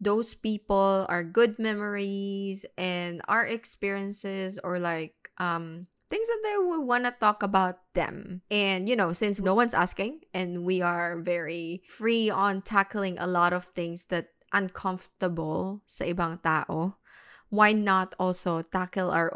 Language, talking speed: Filipino, 150 wpm